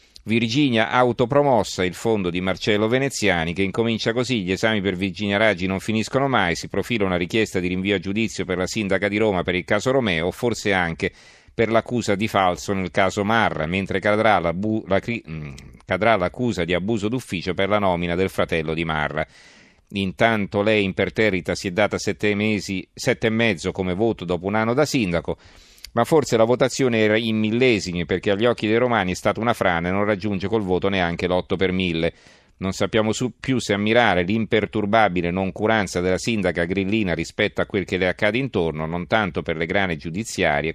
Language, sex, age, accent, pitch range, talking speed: Italian, male, 40-59, native, 90-110 Hz, 185 wpm